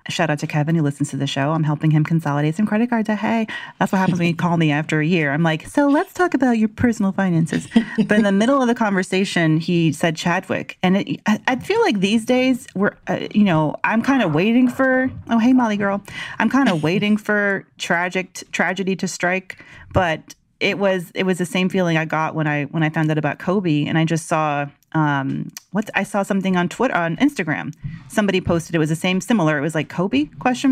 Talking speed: 235 wpm